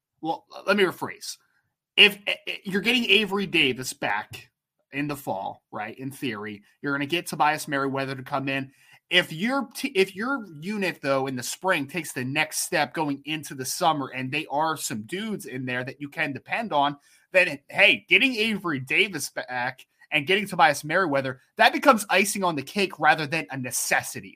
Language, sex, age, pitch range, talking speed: English, male, 30-49, 140-195 Hz, 185 wpm